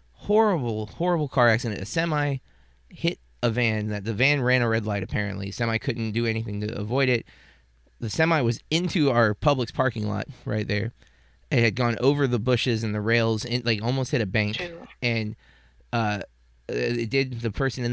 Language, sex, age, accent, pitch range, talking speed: English, male, 20-39, American, 105-130 Hz, 190 wpm